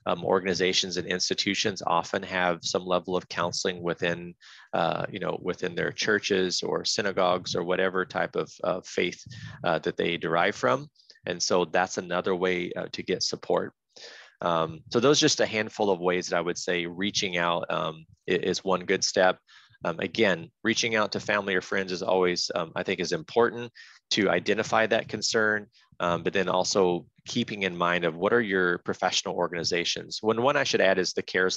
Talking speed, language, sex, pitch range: 190 wpm, English, male, 90-100 Hz